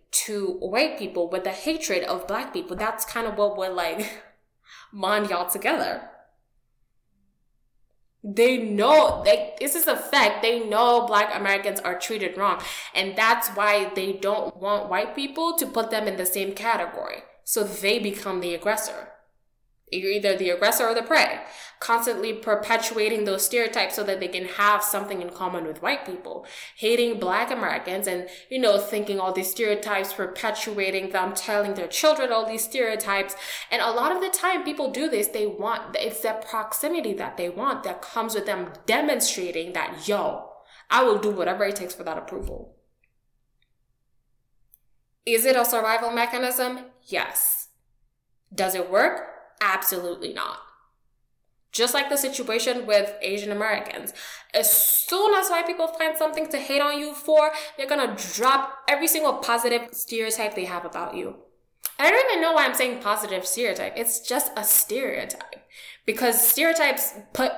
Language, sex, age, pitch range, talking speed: English, female, 10-29, 190-255 Hz, 160 wpm